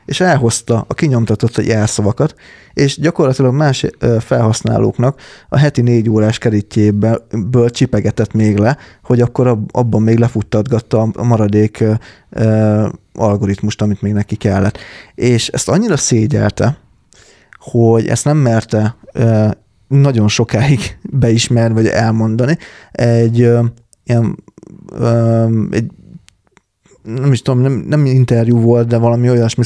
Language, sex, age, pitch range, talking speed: Hungarian, male, 20-39, 110-120 Hz, 125 wpm